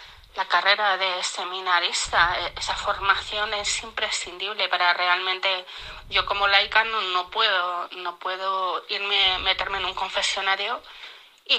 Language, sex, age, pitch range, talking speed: Spanish, female, 20-39, 180-200 Hz, 125 wpm